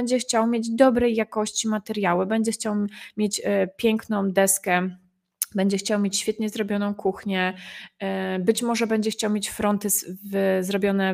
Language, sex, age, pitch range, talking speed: Polish, female, 20-39, 195-240 Hz, 135 wpm